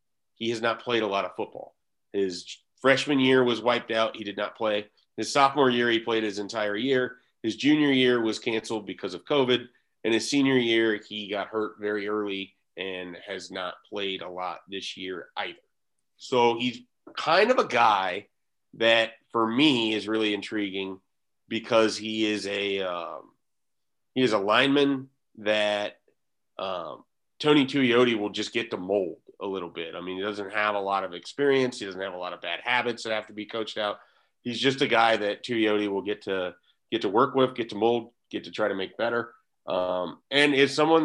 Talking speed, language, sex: 195 wpm, English, male